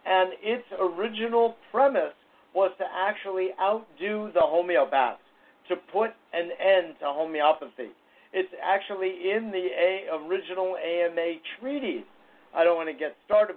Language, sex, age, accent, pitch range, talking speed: English, male, 50-69, American, 160-210 Hz, 130 wpm